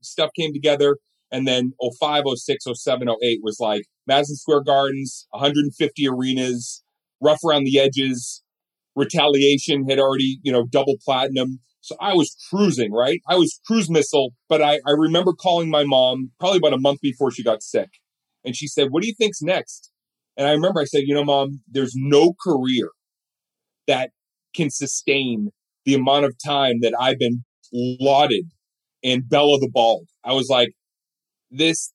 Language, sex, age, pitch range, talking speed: English, male, 30-49, 130-160 Hz, 165 wpm